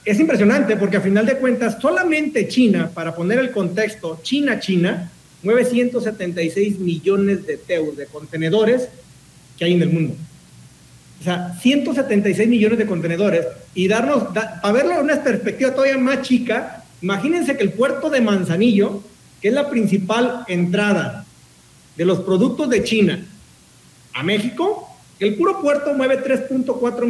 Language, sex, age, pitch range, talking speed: Spanish, male, 50-69, 180-240 Hz, 145 wpm